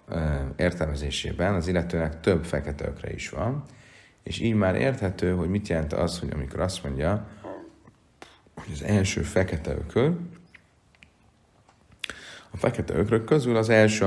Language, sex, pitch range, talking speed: Hungarian, male, 75-100 Hz, 130 wpm